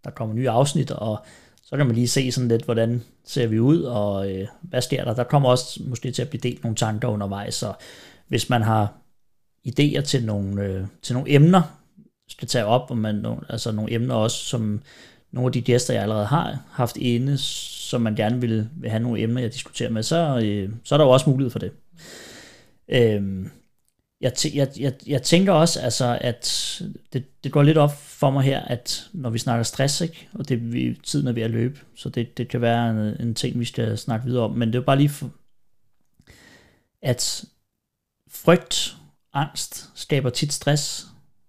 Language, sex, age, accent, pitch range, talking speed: Danish, male, 30-49, native, 115-140 Hz, 200 wpm